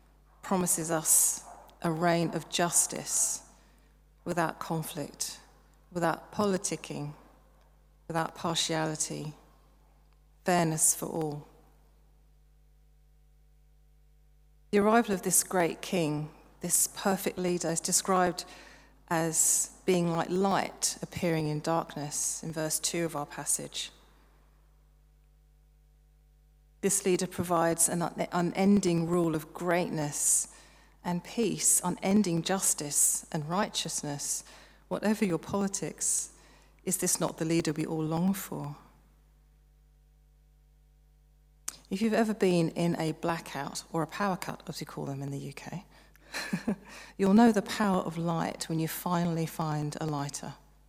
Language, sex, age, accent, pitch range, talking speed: English, female, 40-59, British, 150-180 Hz, 110 wpm